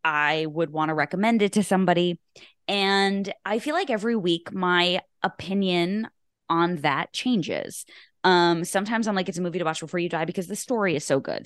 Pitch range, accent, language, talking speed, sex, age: 170-220 Hz, American, English, 195 wpm, female, 20-39